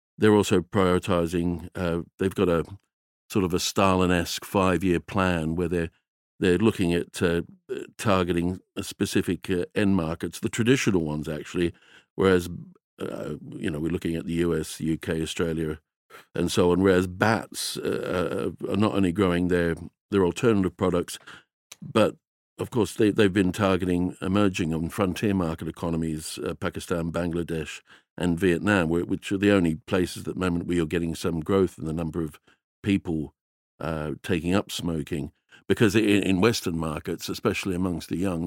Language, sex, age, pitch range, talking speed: English, male, 60-79, 80-95 Hz, 160 wpm